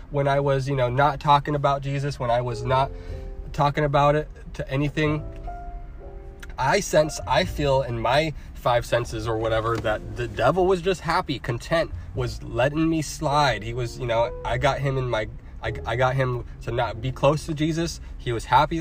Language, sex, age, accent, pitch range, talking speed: English, male, 20-39, American, 115-150 Hz, 195 wpm